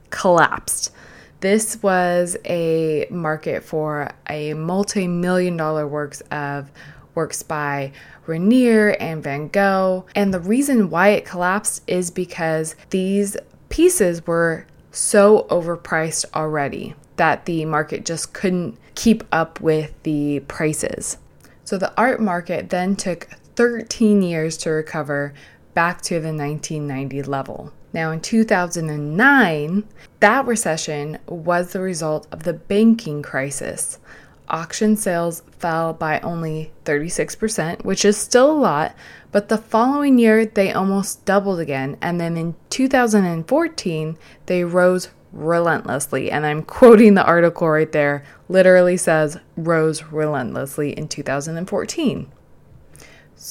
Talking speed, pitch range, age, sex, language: 120 wpm, 155-200 Hz, 20-39, female, English